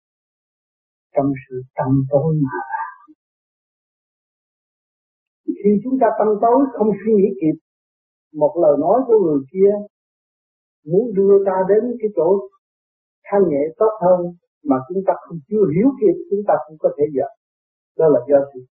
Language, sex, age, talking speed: Vietnamese, male, 50-69, 150 wpm